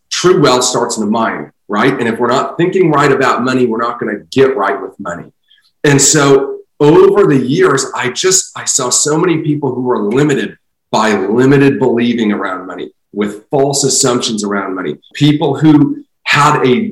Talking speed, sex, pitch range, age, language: 180 wpm, male, 115-145 Hz, 40-59, English